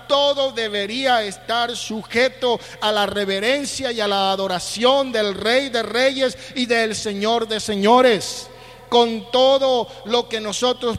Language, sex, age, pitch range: Spanish, male, 50-69, 175-225 Hz